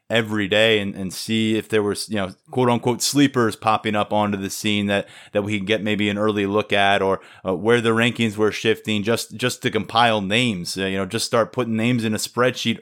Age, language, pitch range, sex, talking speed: 20-39, English, 105-120 Hz, male, 235 wpm